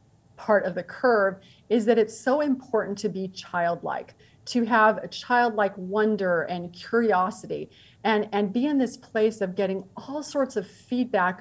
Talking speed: 165 wpm